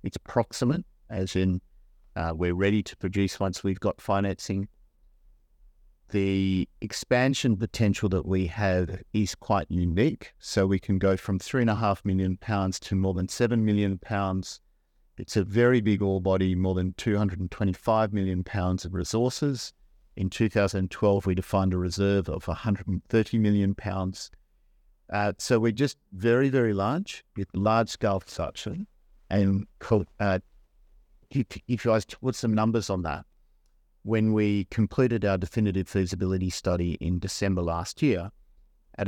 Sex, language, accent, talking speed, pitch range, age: male, English, Australian, 145 wpm, 95-110 Hz, 50-69